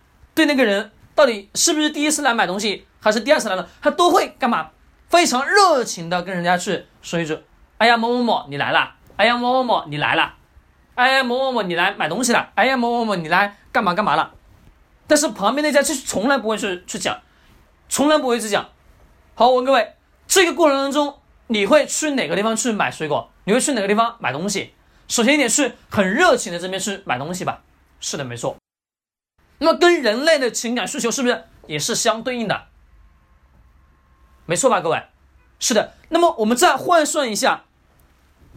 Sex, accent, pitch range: male, native, 190-285 Hz